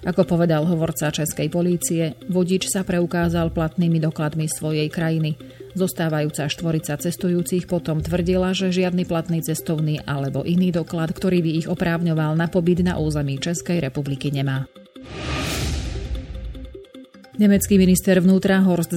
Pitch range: 150-180 Hz